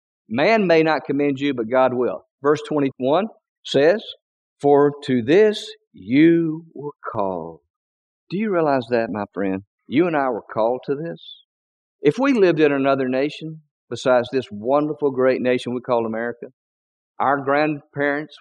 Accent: American